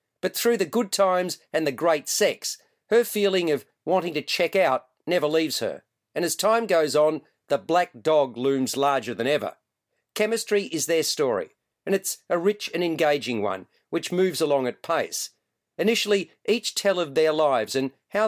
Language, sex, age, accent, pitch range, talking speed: English, male, 40-59, Australian, 145-195 Hz, 180 wpm